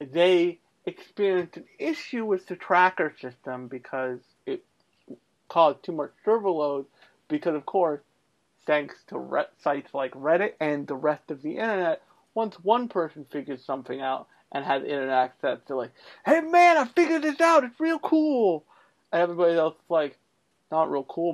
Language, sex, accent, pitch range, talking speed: English, male, American, 145-190 Hz, 165 wpm